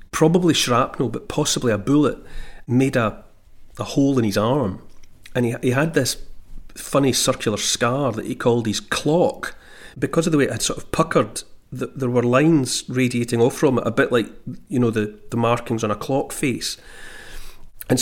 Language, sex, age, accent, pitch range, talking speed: English, male, 40-59, British, 115-140 Hz, 185 wpm